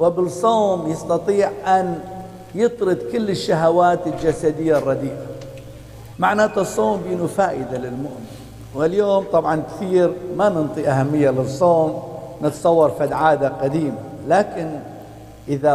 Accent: Lebanese